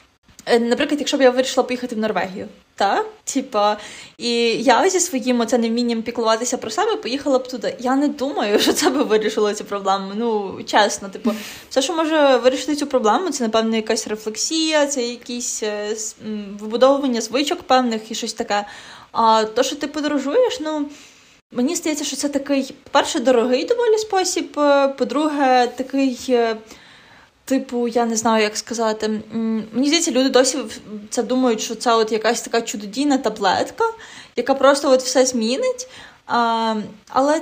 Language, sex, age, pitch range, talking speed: Ukrainian, female, 20-39, 225-285 Hz, 150 wpm